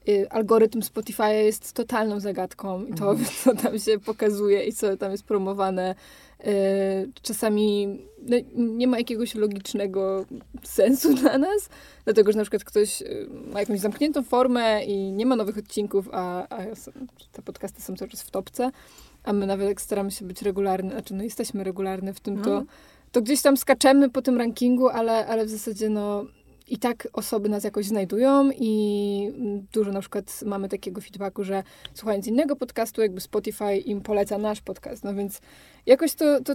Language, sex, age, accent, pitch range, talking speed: Polish, female, 20-39, native, 205-255 Hz, 165 wpm